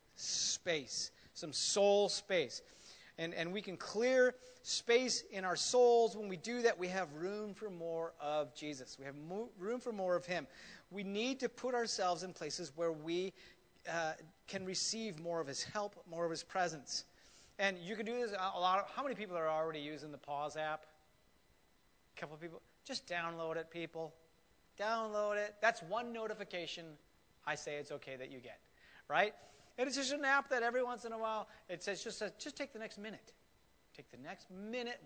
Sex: male